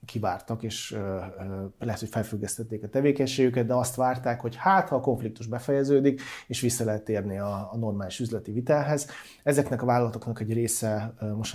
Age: 30-49